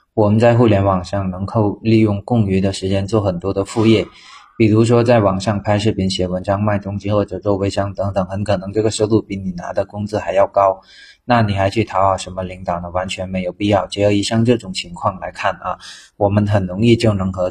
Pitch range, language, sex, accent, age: 95-110 Hz, Chinese, male, native, 20-39